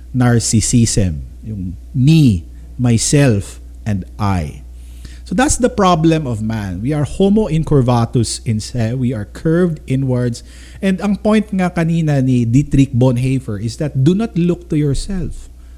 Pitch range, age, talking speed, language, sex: 90-150 Hz, 50-69, 135 wpm, Filipino, male